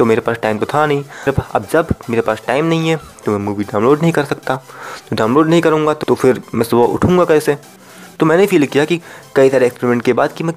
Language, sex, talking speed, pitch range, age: Hindi, male, 245 wpm, 115-155 Hz, 20-39